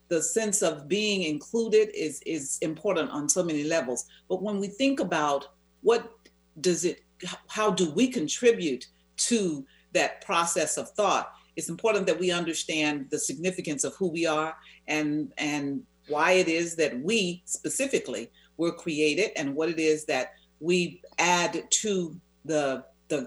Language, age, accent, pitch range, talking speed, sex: English, 50-69, American, 150-195 Hz, 155 wpm, female